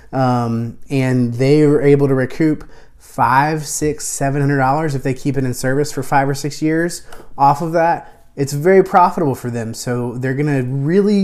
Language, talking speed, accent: English, 185 wpm, American